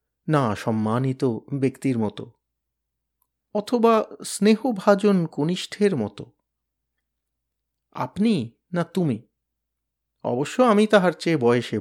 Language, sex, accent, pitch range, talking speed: Bengali, male, native, 125-165 Hz, 50 wpm